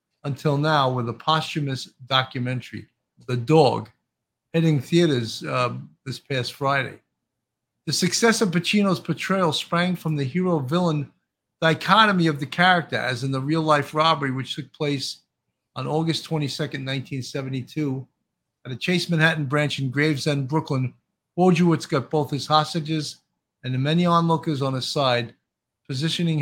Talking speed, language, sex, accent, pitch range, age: 135 wpm, English, male, American, 130-165 Hz, 50-69